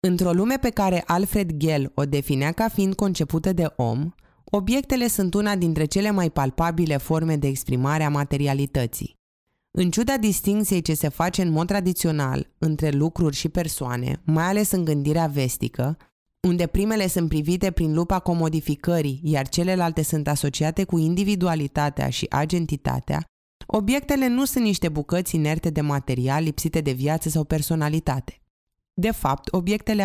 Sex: female